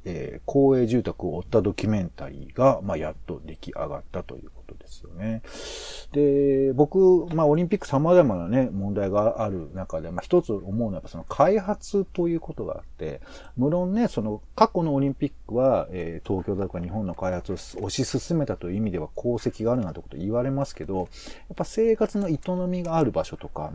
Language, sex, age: Japanese, male, 40-59